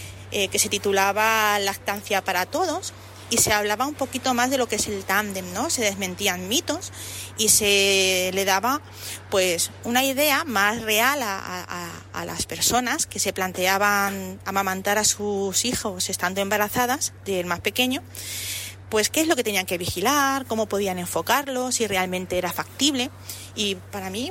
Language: Spanish